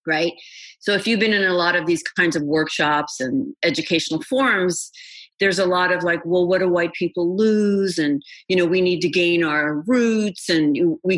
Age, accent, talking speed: 50-69, American, 205 wpm